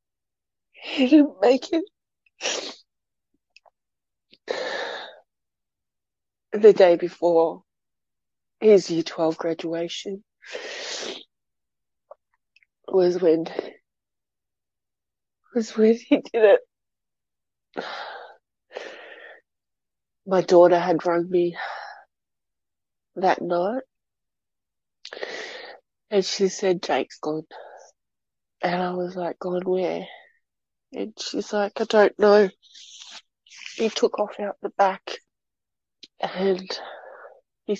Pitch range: 185-250 Hz